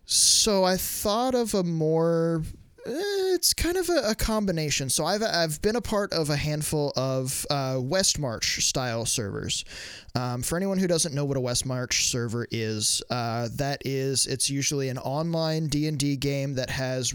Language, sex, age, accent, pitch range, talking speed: English, male, 20-39, American, 130-155 Hz, 175 wpm